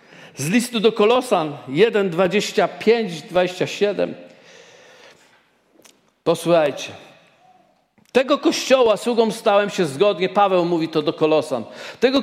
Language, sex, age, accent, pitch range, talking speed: Polish, male, 50-69, native, 205-265 Hz, 90 wpm